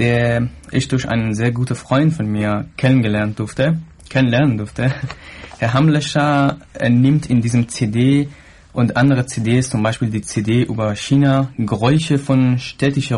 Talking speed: 145 wpm